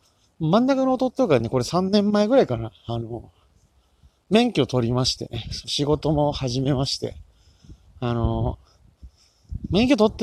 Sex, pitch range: male, 110-150 Hz